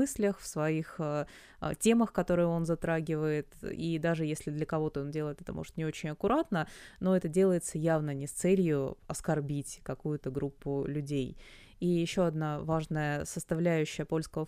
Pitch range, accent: 155-185 Hz, native